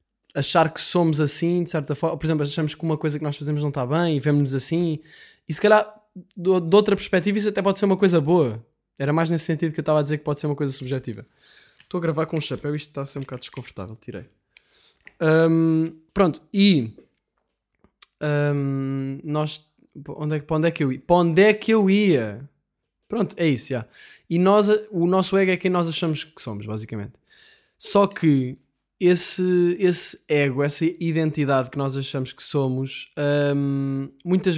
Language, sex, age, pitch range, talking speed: Portuguese, male, 20-39, 145-180 Hz, 200 wpm